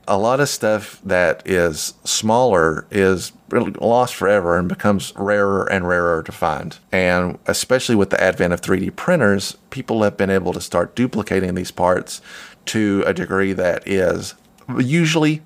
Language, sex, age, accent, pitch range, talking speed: English, male, 30-49, American, 90-110 Hz, 155 wpm